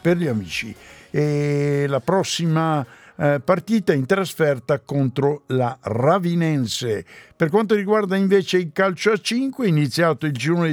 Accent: native